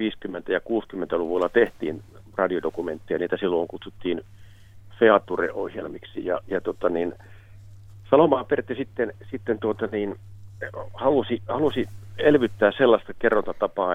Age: 50-69